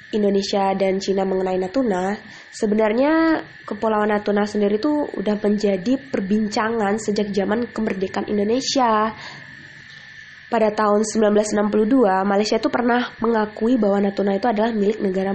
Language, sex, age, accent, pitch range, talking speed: Indonesian, female, 20-39, native, 205-255 Hz, 115 wpm